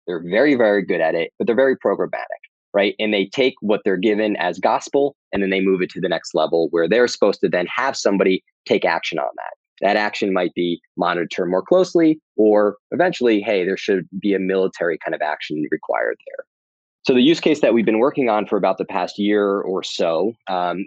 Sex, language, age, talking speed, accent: male, English, 20-39, 220 wpm, American